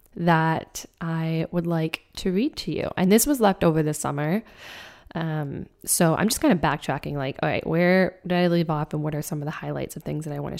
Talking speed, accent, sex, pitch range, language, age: 245 wpm, American, female, 160-195 Hz, English, 10-29